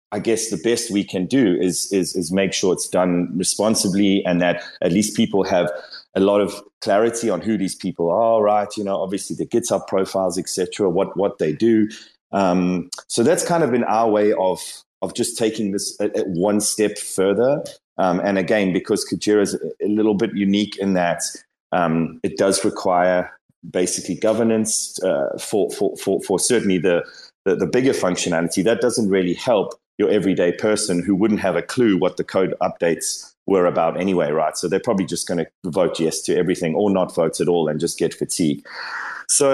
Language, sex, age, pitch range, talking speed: English, male, 30-49, 90-115 Hz, 195 wpm